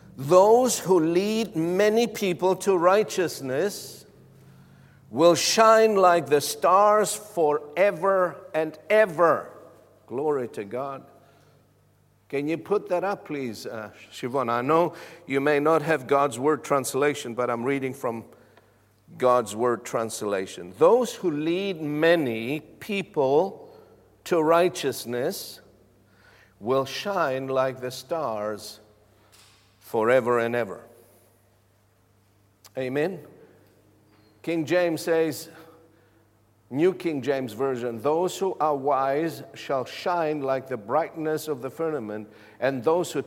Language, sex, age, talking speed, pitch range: English, male, 50-69, 110 wpm, 110-165 Hz